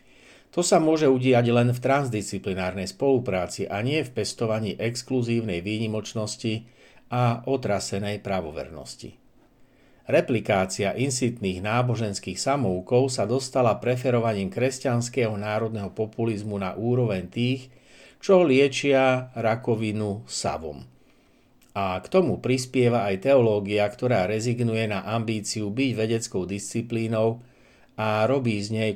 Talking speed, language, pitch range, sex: 105 wpm, Slovak, 105-125 Hz, male